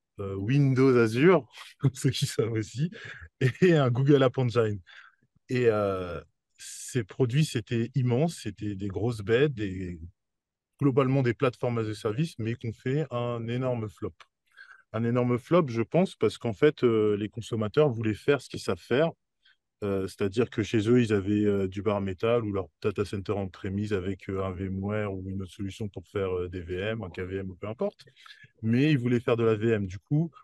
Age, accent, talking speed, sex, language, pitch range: 20-39, French, 190 wpm, male, French, 105-130 Hz